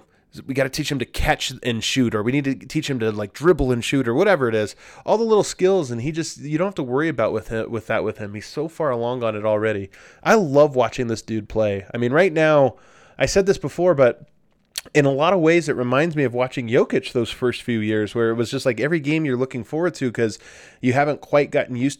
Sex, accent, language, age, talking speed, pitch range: male, American, English, 20-39, 265 wpm, 115-150 Hz